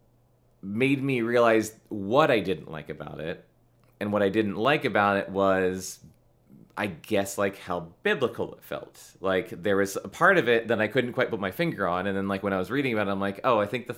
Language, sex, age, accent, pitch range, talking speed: English, male, 30-49, American, 95-120 Hz, 230 wpm